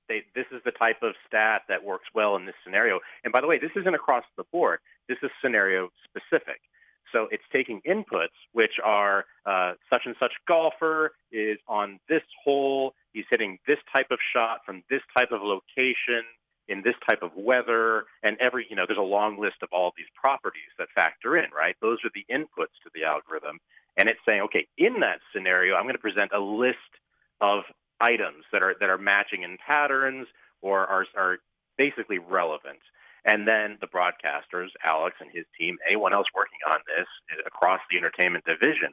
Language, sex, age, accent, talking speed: English, male, 40-59, American, 190 wpm